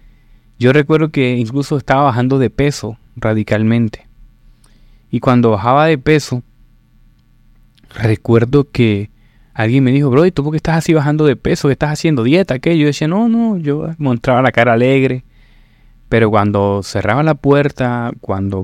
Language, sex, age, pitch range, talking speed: Spanish, male, 20-39, 115-135 Hz, 155 wpm